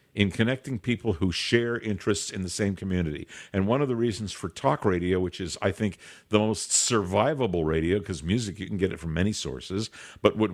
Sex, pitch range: male, 90-110 Hz